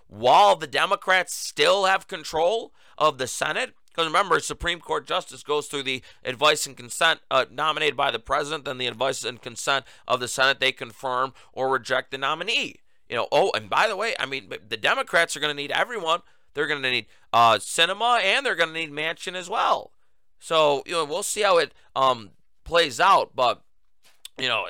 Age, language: 30-49, English